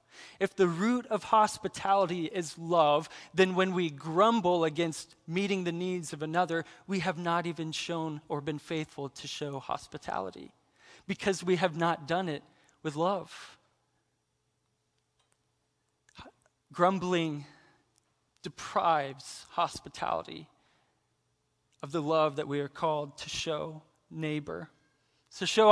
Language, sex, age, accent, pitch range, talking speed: English, male, 20-39, American, 160-205 Hz, 120 wpm